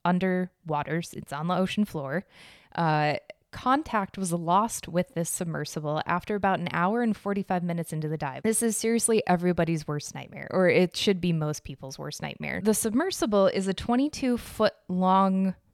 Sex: female